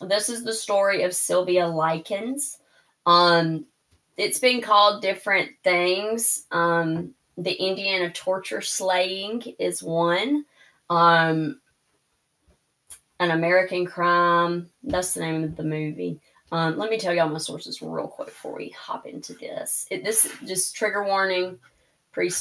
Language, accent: English, American